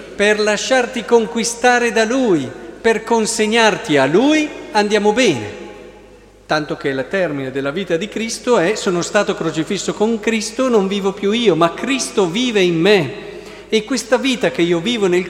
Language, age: Italian, 50-69